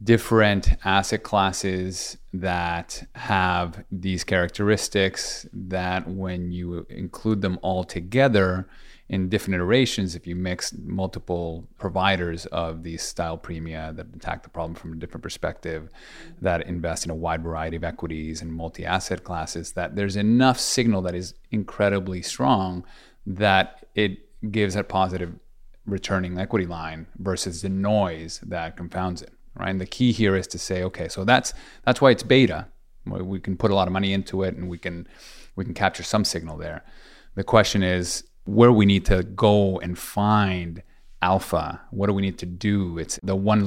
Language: English